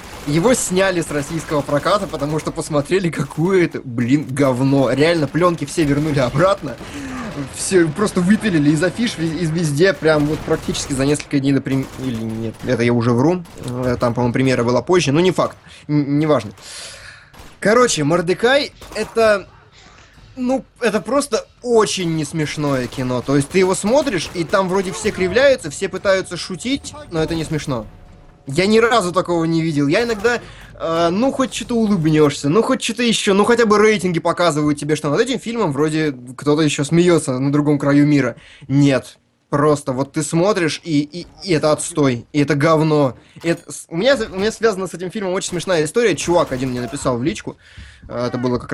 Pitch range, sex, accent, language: 140-185 Hz, male, native, Russian